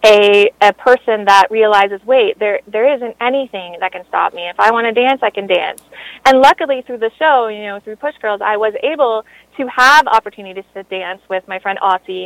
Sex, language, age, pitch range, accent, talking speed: female, English, 30-49, 210-265 Hz, American, 215 wpm